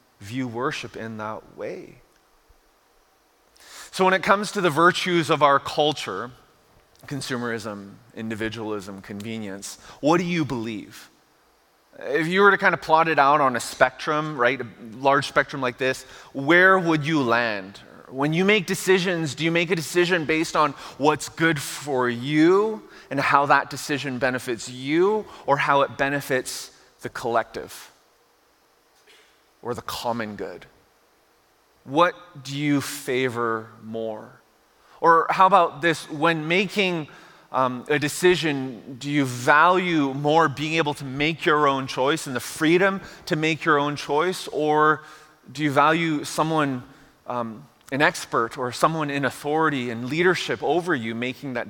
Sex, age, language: male, 30-49, English